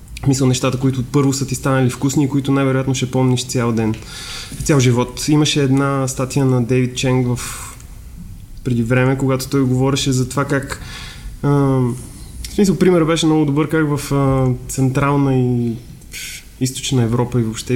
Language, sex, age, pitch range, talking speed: Bulgarian, male, 20-39, 125-145 Hz, 155 wpm